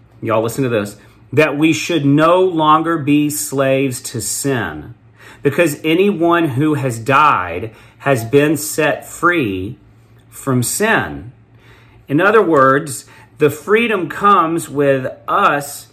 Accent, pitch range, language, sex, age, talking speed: American, 120-160 Hz, English, male, 40-59, 120 wpm